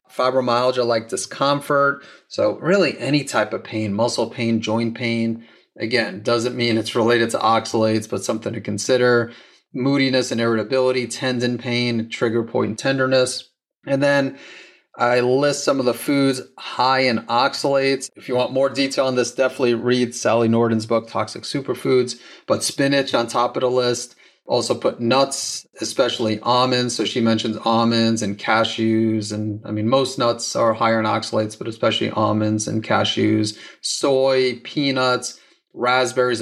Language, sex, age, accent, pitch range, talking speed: English, male, 30-49, American, 115-130 Hz, 150 wpm